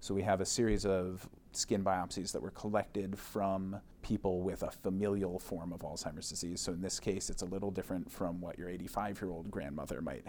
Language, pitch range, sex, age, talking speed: English, 90-100 Hz, male, 30-49, 200 wpm